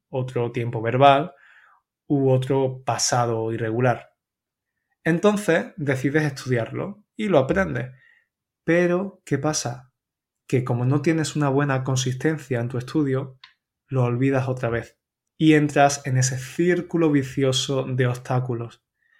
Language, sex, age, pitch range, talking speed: Spanish, male, 20-39, 130-155 Hz, 120 wpm